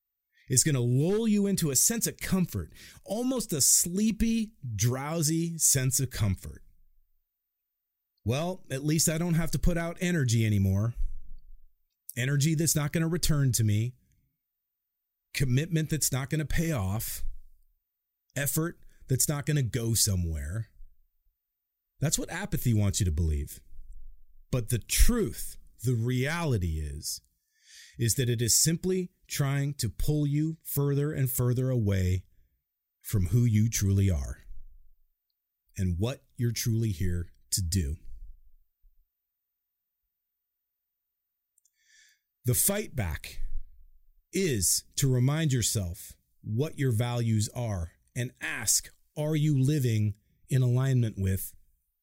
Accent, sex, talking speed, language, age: American, male, 125 wpm, English, 30-49